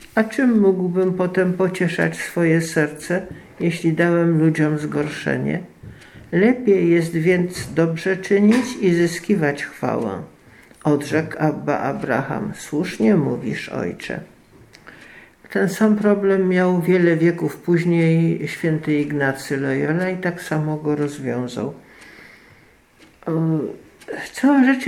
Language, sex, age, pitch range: Polish, male, 50-69, 160-205 Hz